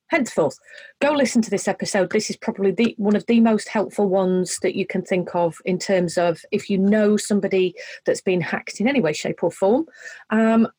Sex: female